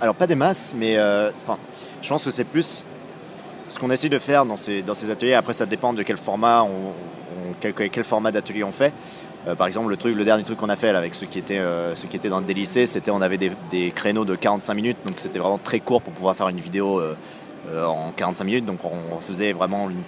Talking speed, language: 255 wpm, French